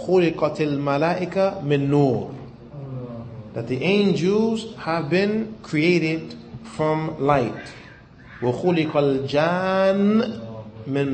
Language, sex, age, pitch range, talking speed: English, male, 30-49, 130-170 Hz, 70 wpm